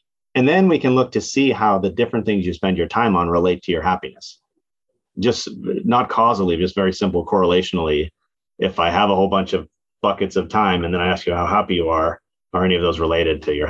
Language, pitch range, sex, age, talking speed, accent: English, 95-130 Hz, male, 30-49, 230 wpm, American